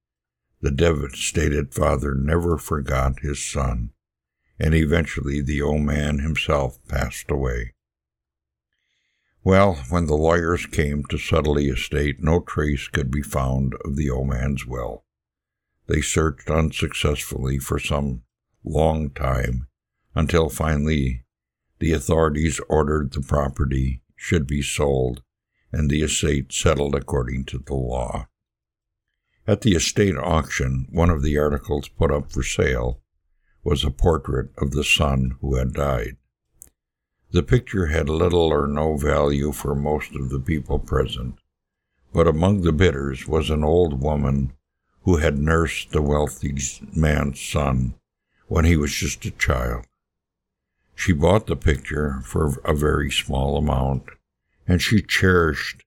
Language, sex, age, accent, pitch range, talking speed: English, male, 60-79, American, 65-80 Hz, 135 wpm